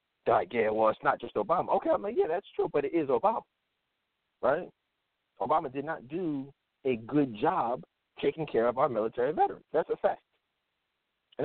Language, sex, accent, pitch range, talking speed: English, male, American, 105-145 Hz, 185 wpm